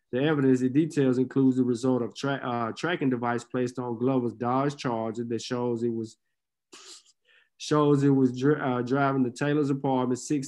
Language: English